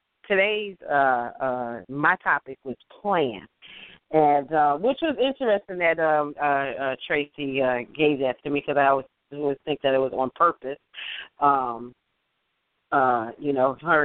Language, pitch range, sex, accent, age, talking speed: English, 130-160 Hz, female, American, 40-59, 155 wpm